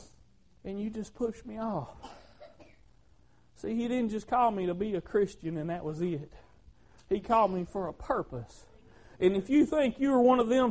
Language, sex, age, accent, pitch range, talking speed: English, male, 40-59, American, 180-260 Hz, 190 wpm